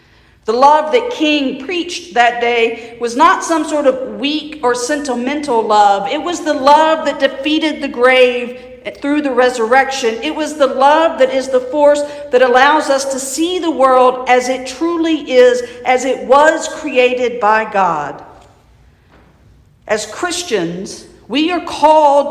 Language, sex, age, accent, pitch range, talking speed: English, female, 50-69, American, 235-290 Hz, 155 wpm